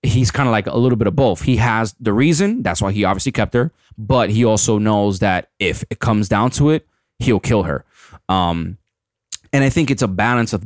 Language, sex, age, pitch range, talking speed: English, male, 20-39, 100-125 Hz, 230 wpm